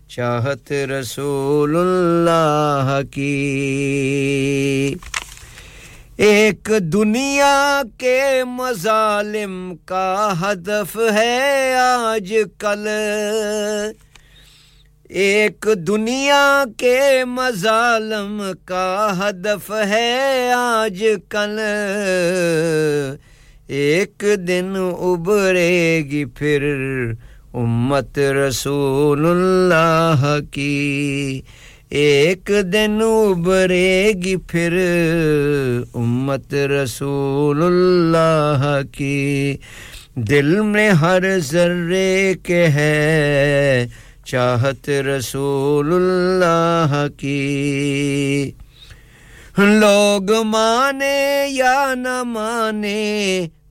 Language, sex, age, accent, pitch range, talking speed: English, male, 50-69, Indian, 140-210 Hz, 35 wpm